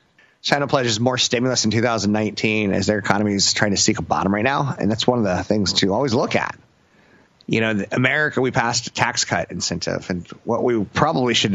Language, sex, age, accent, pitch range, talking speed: English, male, 30-49, American, 95-125 Hz, 215 wpm